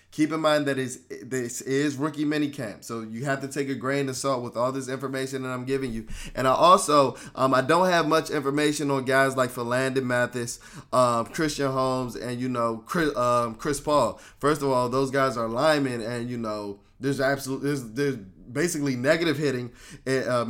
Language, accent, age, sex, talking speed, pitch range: English, American, 20-39, male, 200 wpm, 115-140 Hz